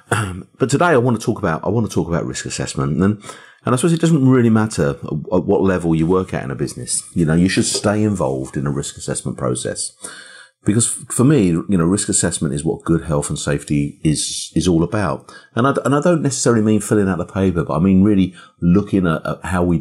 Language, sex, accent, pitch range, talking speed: English, male, British, 80-120 Hz, 250 wpm